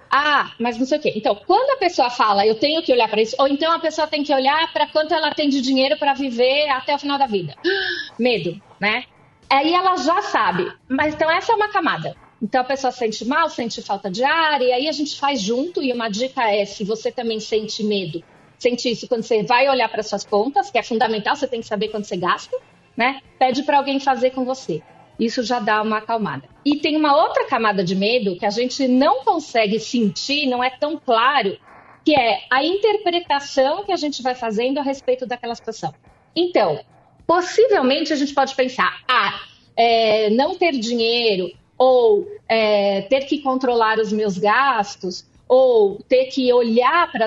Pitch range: 220-295 Hz